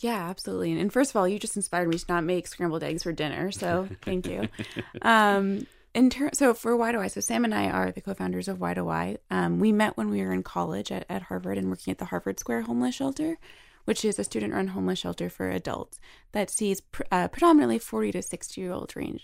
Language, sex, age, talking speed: English, female, 20-39, 230 wpm